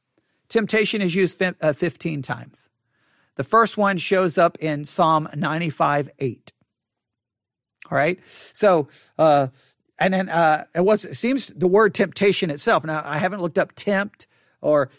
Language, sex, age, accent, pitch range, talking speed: English, male, 50-69, American, 155-210 Hz, 140 wpm